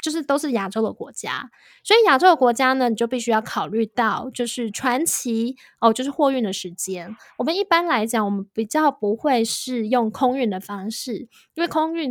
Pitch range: 225-285 Hz